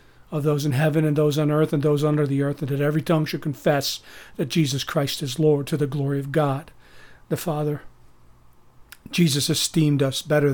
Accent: American